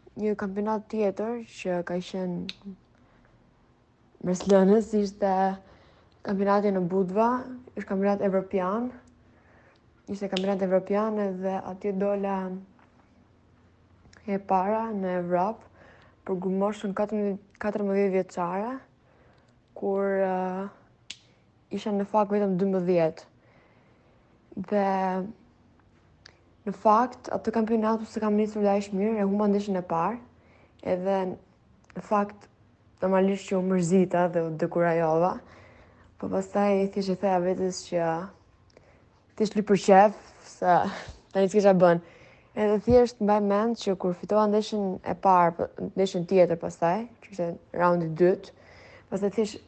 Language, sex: English, female